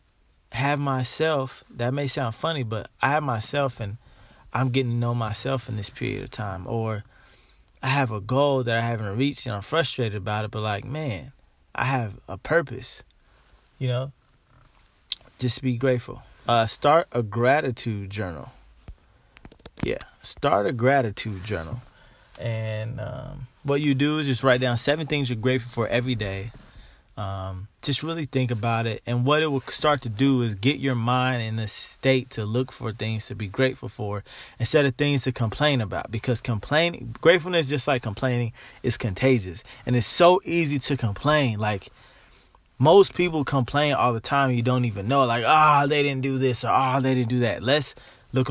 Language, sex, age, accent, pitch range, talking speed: English, male, 20-39, American, 115-135 Hz, 185 wpm